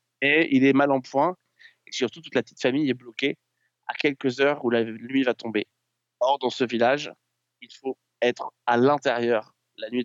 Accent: French